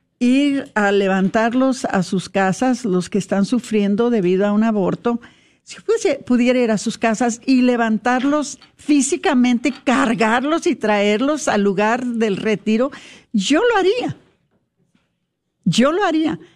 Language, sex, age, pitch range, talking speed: Spanish, female, 50-69, 200-250 Hz, 135 wpm